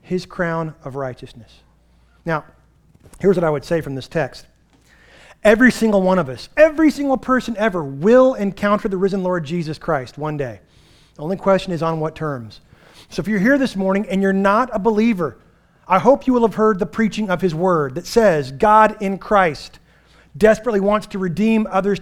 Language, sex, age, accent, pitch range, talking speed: English, male, 30-49, American, 170-210 Hz, 190 wpm